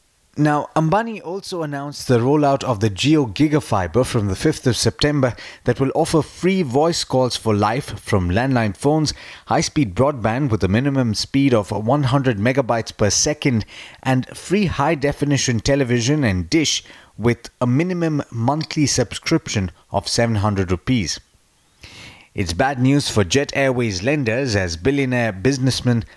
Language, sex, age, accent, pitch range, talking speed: English, male, 30-49, Indian, 105-140 Hz, 140 wpm